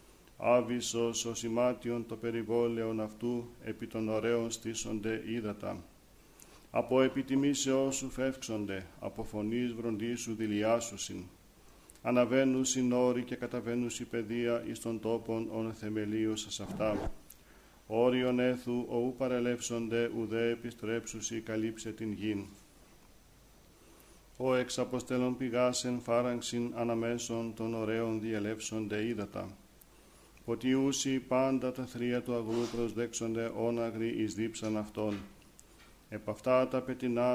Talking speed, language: 110 wpm, Greek